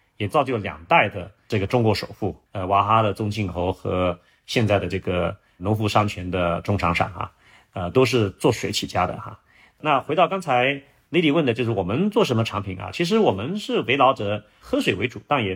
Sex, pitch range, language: male, 100-135 Hz, Chinese